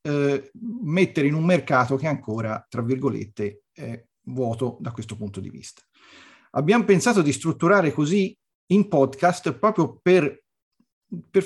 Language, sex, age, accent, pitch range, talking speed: Italian, male, 40-59, native, 125-175 Hz, 130 wpm